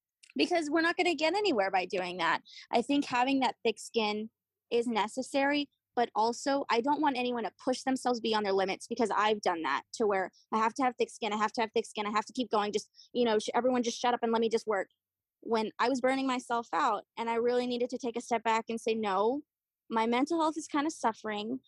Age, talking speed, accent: 20-39, 250 wpm, American